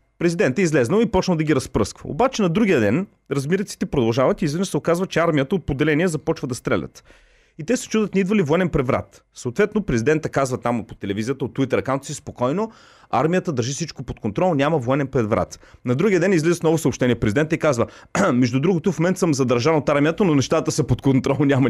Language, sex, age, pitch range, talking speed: Bulgarian, male, 30-49, 120-165 Hz, 205 wpm